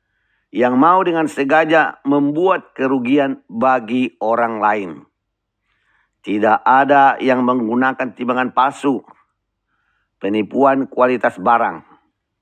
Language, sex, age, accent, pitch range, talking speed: Indonesian, male, 50-69, native, 120-150 Hz, 85 wpm